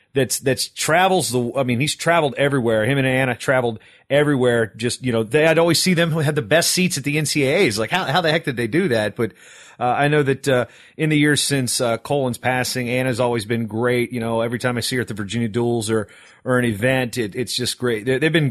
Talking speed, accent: 255 wpm, American